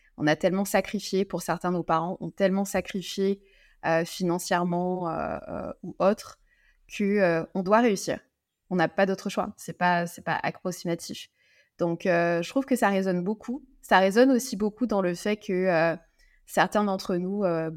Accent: French